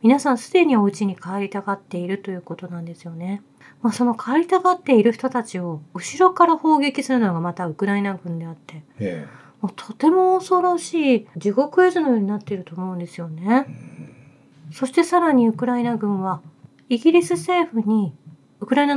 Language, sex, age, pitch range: Japanese, female, 40-59, 195-265 Hz